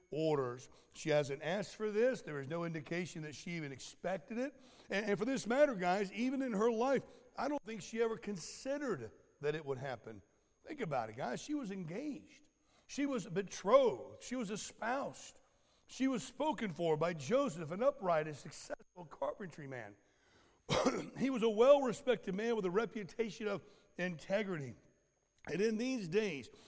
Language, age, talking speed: English, 60-79, 165 wpm